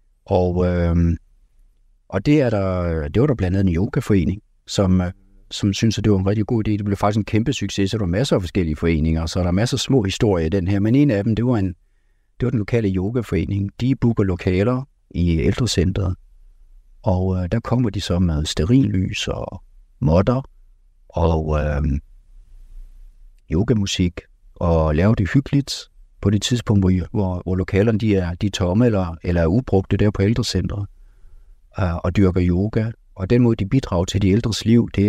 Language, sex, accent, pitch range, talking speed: Danish, male, native, 90-105 Hz, 190 wpm